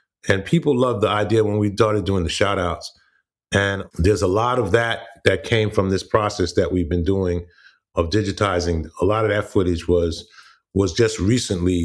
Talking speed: 190 wpm